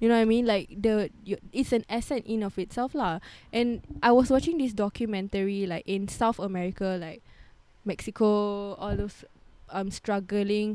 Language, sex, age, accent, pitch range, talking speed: English, female, 10-29, Malaysian, 185-230 Hz, 175 wpm